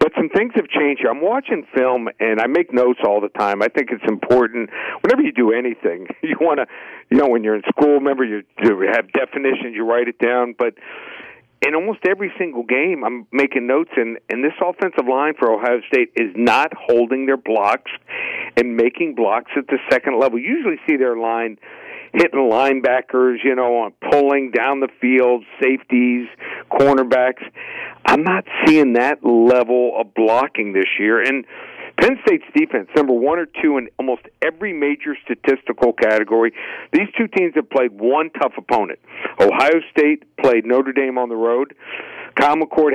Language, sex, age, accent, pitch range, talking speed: English, male, 50-69, American, 120-150 Hz, 175 wpm